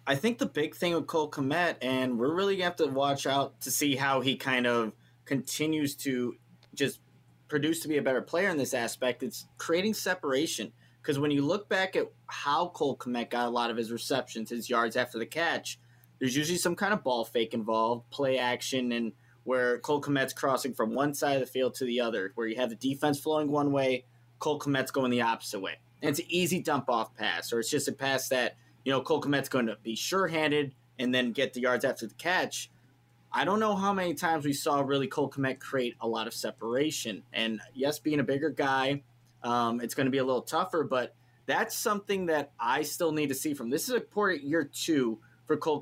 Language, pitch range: English, 120-150 Hz